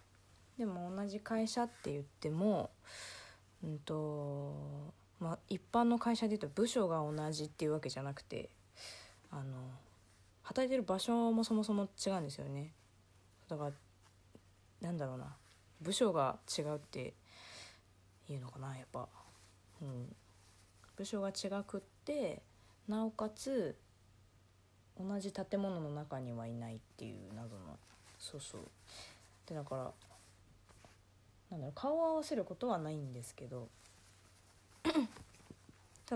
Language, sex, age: Japanese, female, 20-39